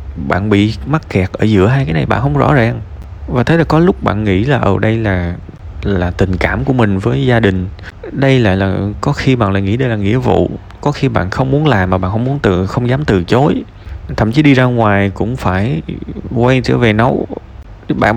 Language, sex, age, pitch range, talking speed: Vietnamese, male, 20-39, 95-130 Hz, 240 wpm